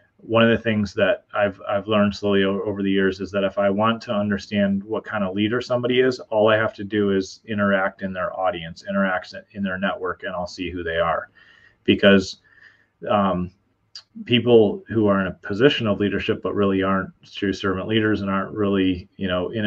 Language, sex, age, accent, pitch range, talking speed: English, male, 30-49, American, 95-105 Hz, 205 wpm